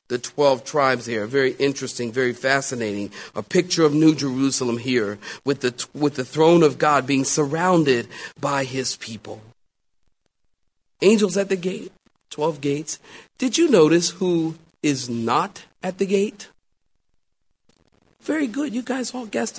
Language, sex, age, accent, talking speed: English, male, 40-59, American, 145 wpm